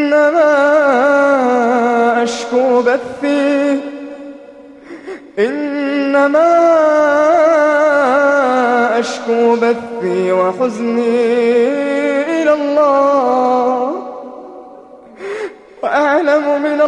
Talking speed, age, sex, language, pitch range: 40 wpm, 20-39, male, Arabic, 245-295 Hz